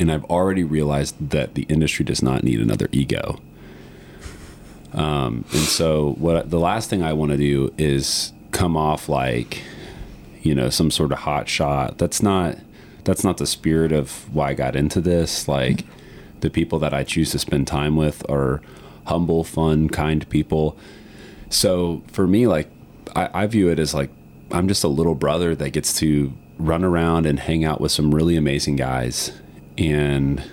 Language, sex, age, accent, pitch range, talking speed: English, male, 30-49, American, 70-80 Hz, 175 wpm